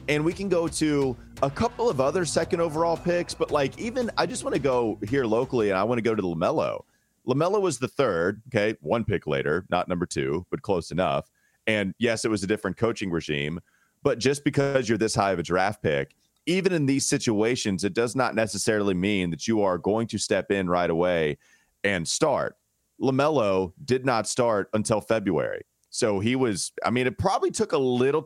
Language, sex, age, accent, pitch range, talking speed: English, male, 30-49, American, 100-130 Hz, 205 wpm